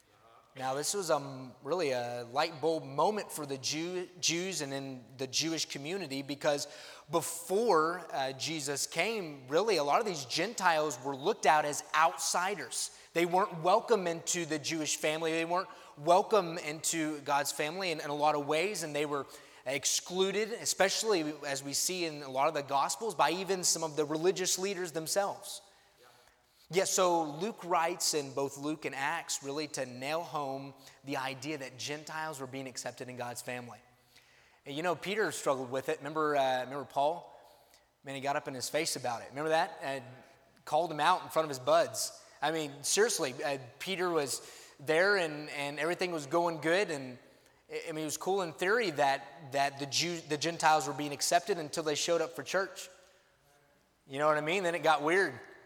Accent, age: American, 20-39